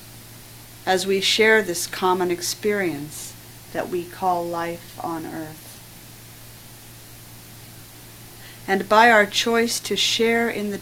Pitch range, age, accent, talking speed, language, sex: 135-185 Hz, 50-69, American, 110 wpm, English, female